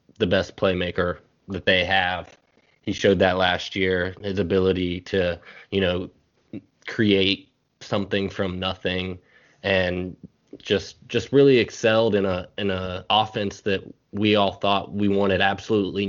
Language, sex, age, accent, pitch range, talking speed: English, male, 20-39, American, 95-105 Hz, 140 wpm